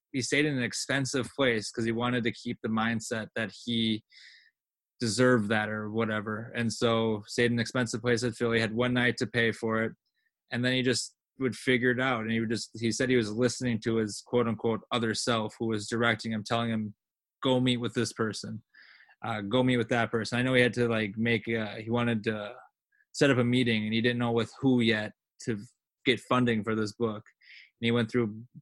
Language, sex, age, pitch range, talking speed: English, male, 20-39, 110-125 Hz, 225 wpm